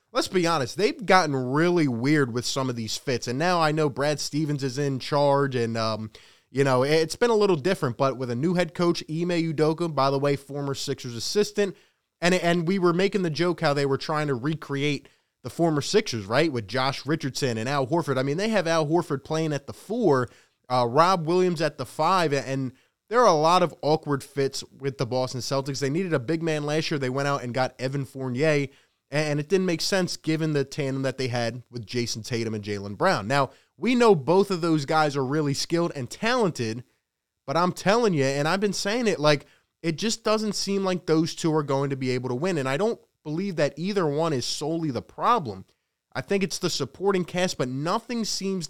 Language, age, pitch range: English, 20-39, 135-175 Hz